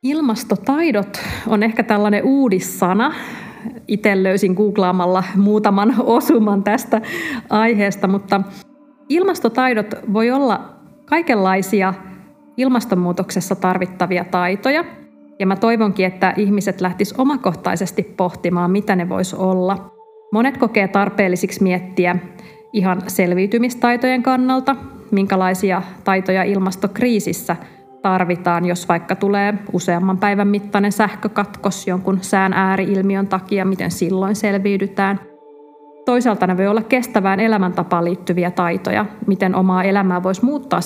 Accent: native